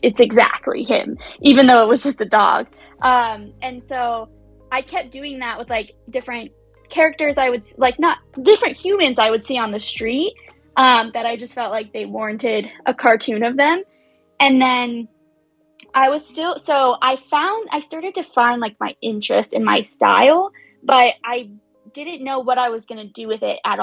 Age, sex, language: 20-39, female, English